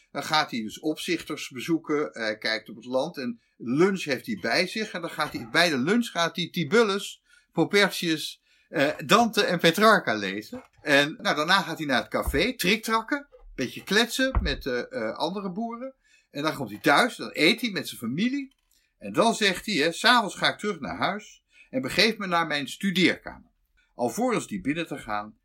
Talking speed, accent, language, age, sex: 195 wpm, Dutch, Dutch, 60-79, male